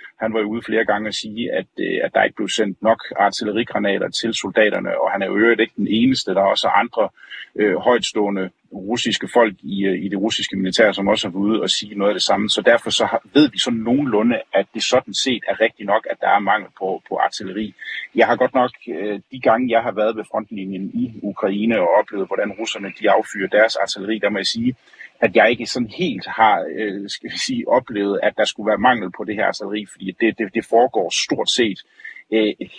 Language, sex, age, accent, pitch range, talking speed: Danish, male, 30-49, native, 100-115 Hz, 225 wpm